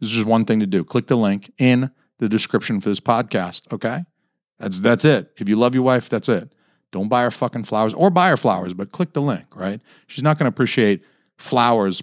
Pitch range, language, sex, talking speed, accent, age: 105-140 Hz, English, male, 235 wpm, American, 40-59